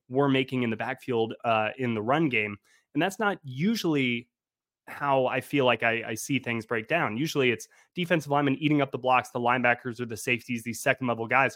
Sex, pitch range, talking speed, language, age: male, 120-140 Hz, 215 wpm, English, 20-39